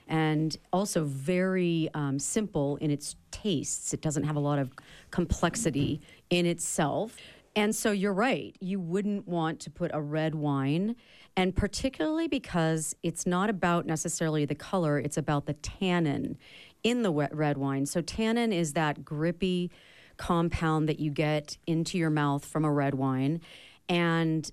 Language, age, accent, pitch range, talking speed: English, 40-59, American, 155-195 Hz, 155 wpm